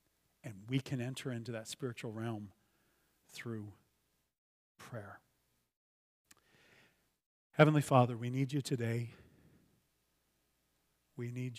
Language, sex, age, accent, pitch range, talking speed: English, male, 40-59, American, 110-140 Hz, 95 wpm